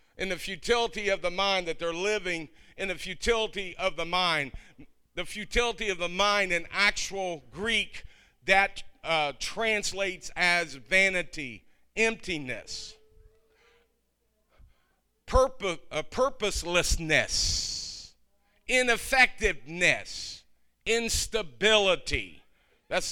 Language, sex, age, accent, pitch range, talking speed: English, male, 50-69, American, 165-205 Hz, 90 wpm